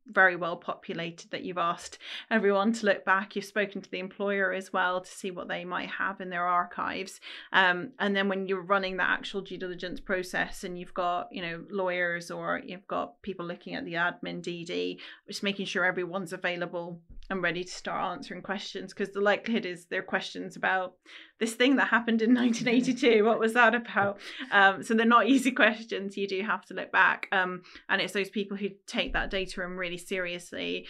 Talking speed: 200 wpm